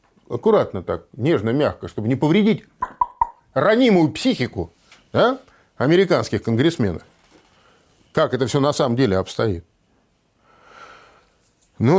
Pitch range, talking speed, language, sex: 135-210 Hz, 95 wpm, Russian, male